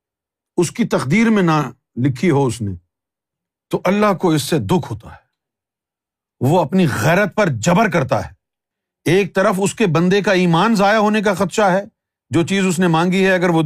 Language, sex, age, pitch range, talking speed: Urdu, male, 50-69, 145-225 Hz, 195 wpm